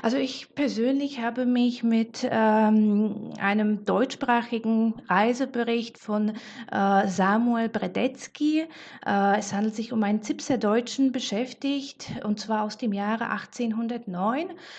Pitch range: 205-235 Hz